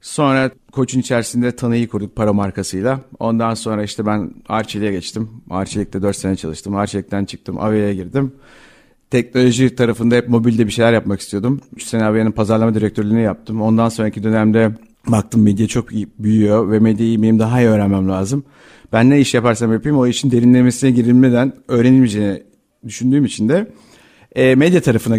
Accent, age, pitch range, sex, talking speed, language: native, 50-69, 105-125 Hz, male, 155 wpm, Turkish